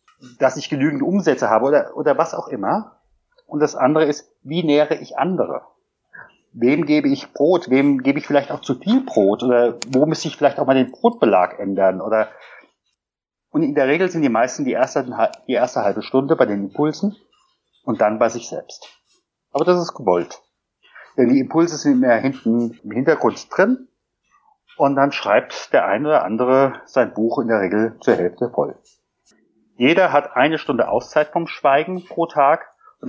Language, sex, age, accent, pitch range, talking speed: German, male, 30-49, German, 115-160 Hz, 180 wpm